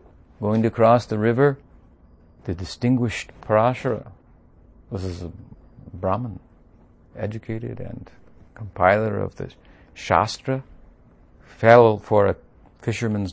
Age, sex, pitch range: 50-69, male, 95-120 Hz